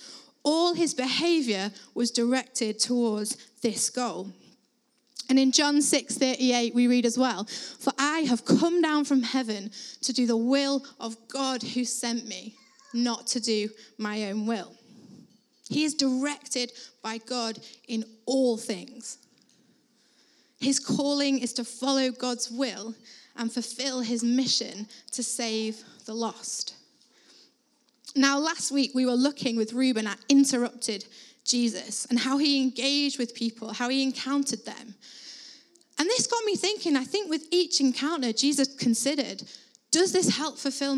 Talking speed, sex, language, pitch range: 145 wpm, female, English, 230-280 Hz